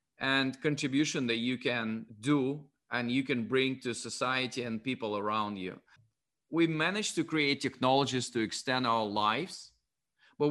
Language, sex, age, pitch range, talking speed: English, male, 30-49, 115-140 Hz, 150 wpm